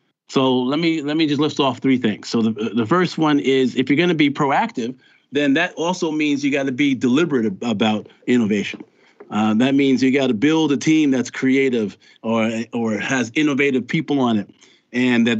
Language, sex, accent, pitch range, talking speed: English, male, American, 115-155 Hz, 205 wpm